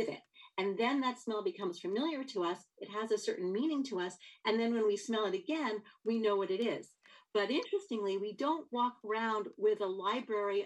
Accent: American